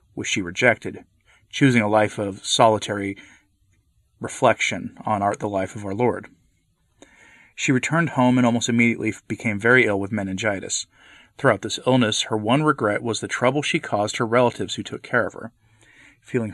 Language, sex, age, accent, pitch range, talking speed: English, male, 30-49, American, 105-130 Hz, 165 wpm